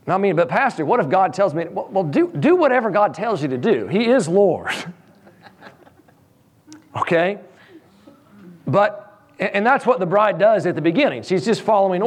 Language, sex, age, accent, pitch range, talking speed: English, male, 40-59, American, 140-205 Hz, 180 wpm